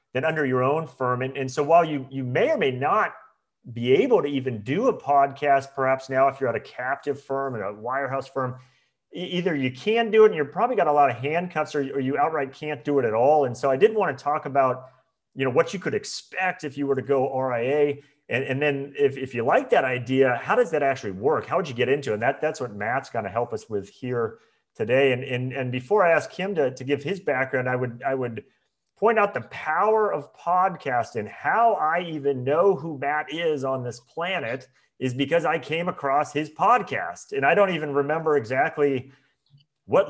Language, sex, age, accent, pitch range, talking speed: English, male, 40-59, American, 130-155 Hz, 230 wpm